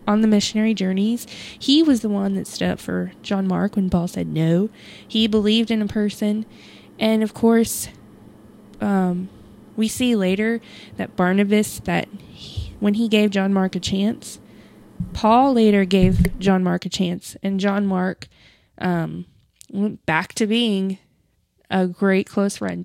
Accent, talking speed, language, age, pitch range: American, 160 wpm, English, 20-39, 185-225 Hz